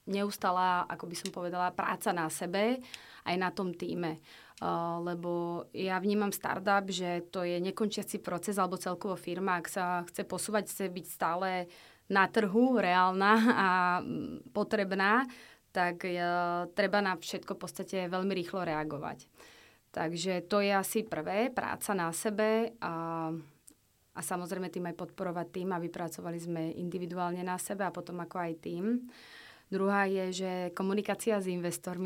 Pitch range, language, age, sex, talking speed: 175-205 Hz, Czech, 20-39, female, 145 wpm